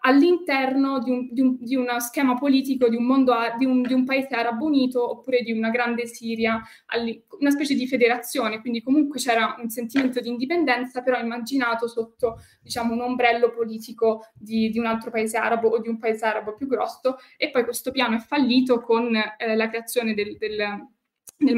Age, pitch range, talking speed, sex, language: 20-39, 225-255 Hz, 180 wpm, female, Italian